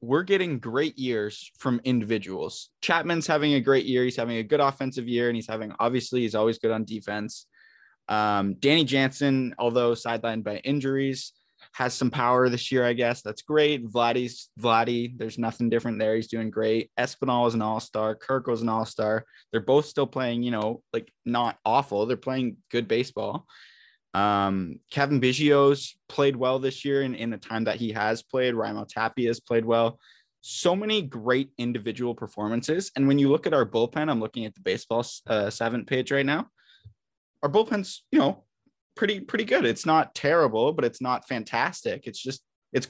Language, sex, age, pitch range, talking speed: English, male, 20-39, 115-140 Hz, 185 wpm